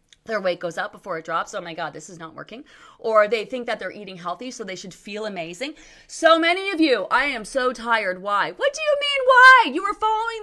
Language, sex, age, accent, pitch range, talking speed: English, female, 30-49, American, 190-290 Hz, 245 wpm